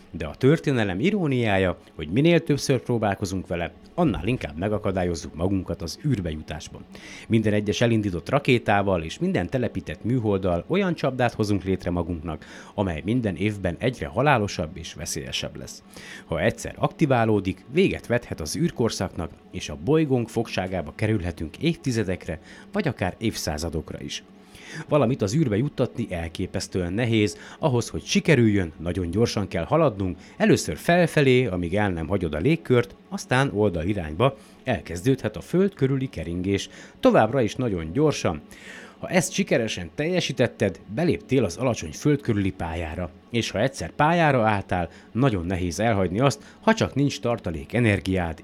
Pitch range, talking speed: 90-135 Hz, 135 wpm